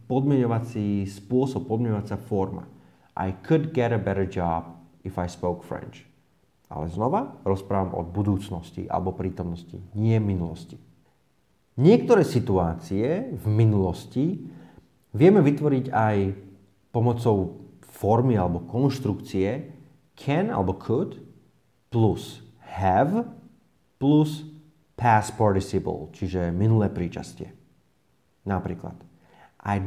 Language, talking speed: Slovak, 95 wpm